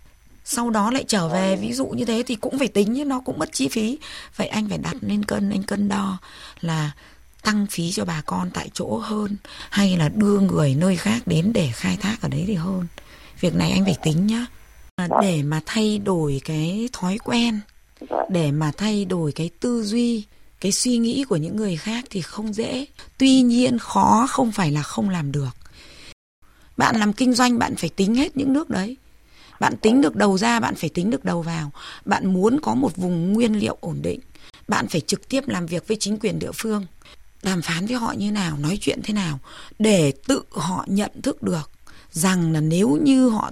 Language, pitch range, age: Vietnamese, 180-235 Hz, 20-39